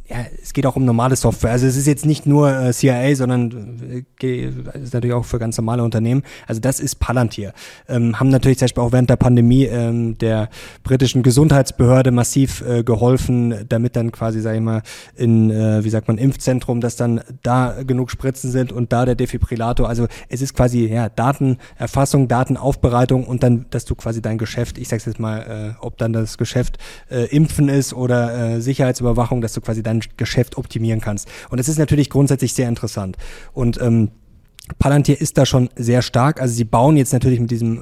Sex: male